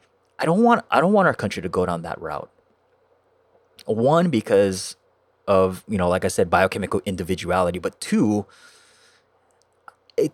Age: 20-39